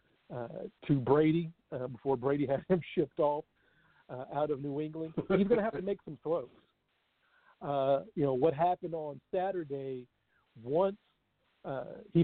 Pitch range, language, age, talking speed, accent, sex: 145-180 Hz, English, 60-79, 160 wpm, American, male